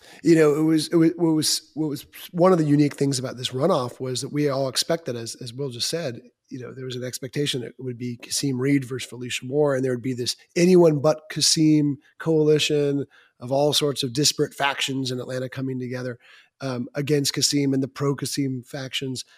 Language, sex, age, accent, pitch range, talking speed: English, male, 30-49, American, 130-155 Hz, 205 wpm